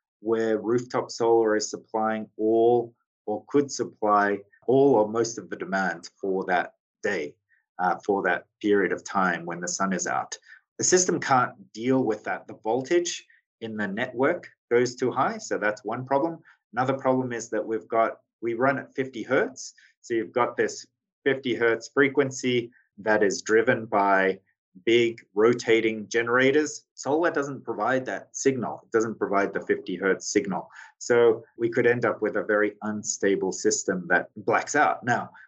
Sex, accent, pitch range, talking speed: male, Australian, 105-130 Hz, 165 wpm